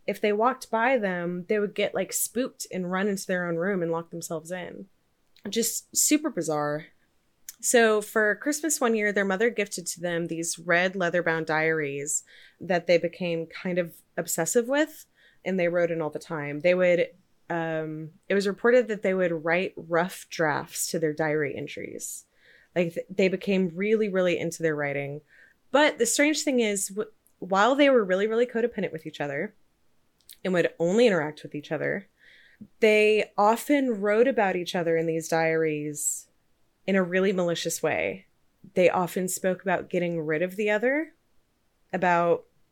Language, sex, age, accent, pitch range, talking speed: English, female, 20-39, American, 170-215 Hz, 170 wpm